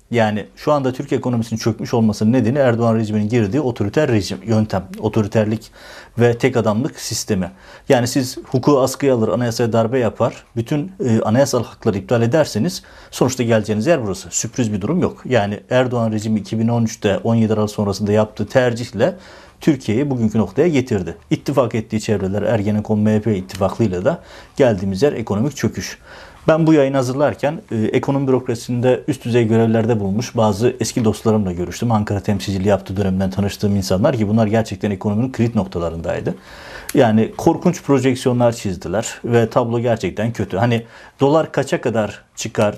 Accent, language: native, Turkish